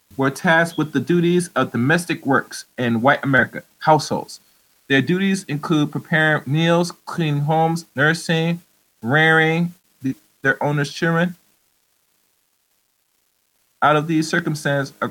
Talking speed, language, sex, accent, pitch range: 115 wpm, English, male, American, 135-165 Hz